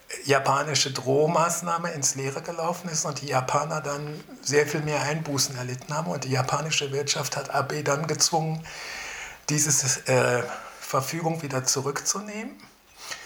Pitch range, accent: 145-165 Hz, German